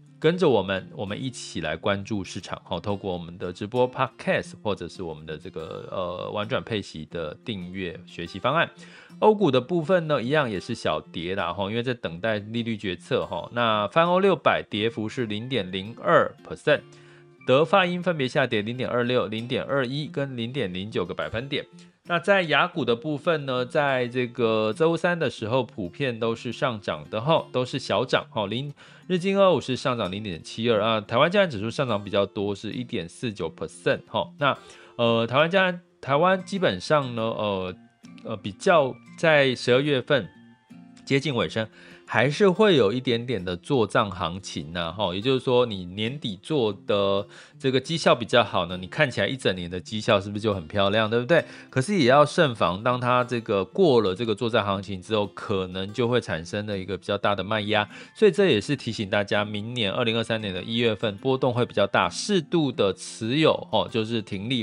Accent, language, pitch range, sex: native, Chinese, 100-140 Hz, male